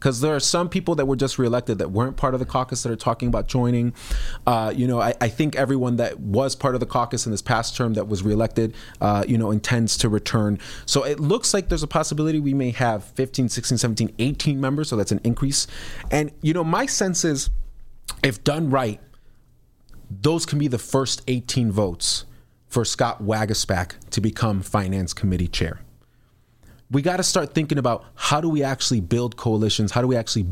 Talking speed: 205 wpm